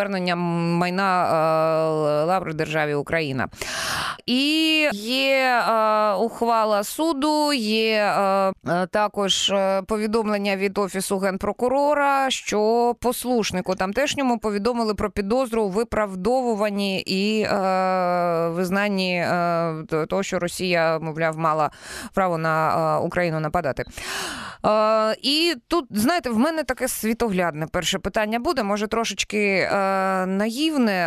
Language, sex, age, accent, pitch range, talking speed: Ukrainian, female, 20-39, native, 175-215 Hz, 90 wpm